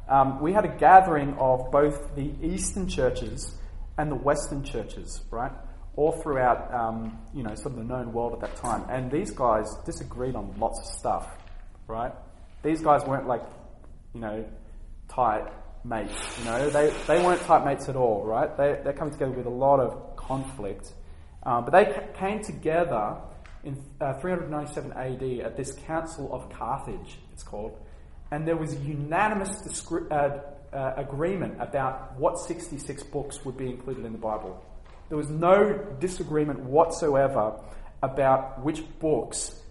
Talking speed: 160 wpm